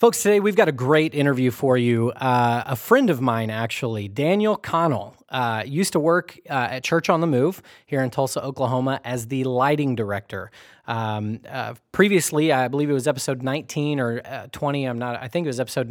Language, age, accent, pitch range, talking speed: English, 30-49, American, 120-150 Hz, 205 wpm